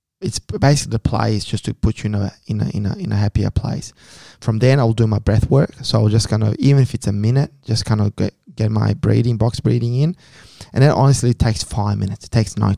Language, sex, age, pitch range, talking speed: English, male, 20-39, 105-120 Hz, 265 wpm